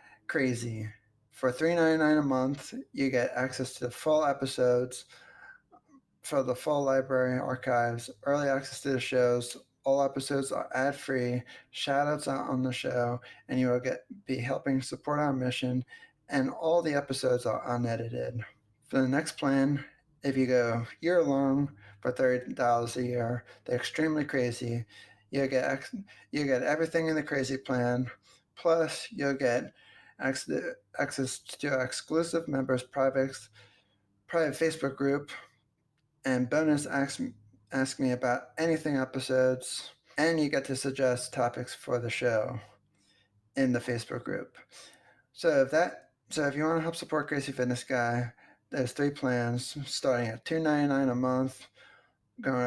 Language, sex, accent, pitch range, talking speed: English, male, American, 125-145 Hz, 145 wpm